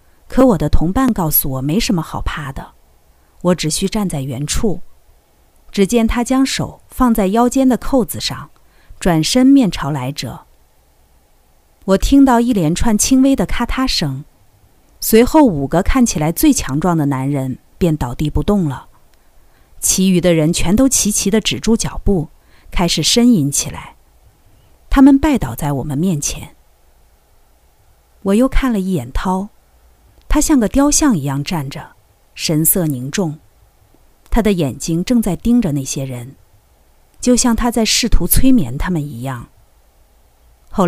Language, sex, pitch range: Chinese, female, 140-225 Hz